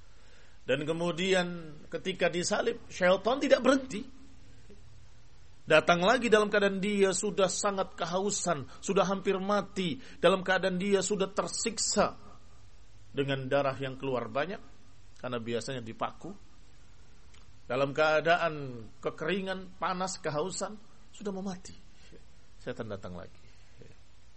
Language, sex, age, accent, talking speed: Indonesian, male, 50-69, native, 100 wpm